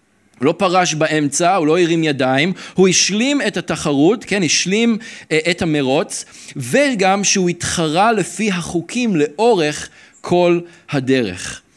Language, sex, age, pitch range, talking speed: Hebrew, male, 40-59, 145-195 Hz, 120 wpm